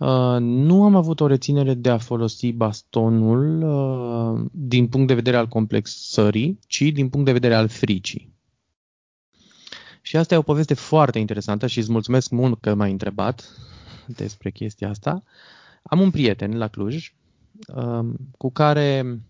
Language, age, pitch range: Romanian, 20-39, 115-165 Hz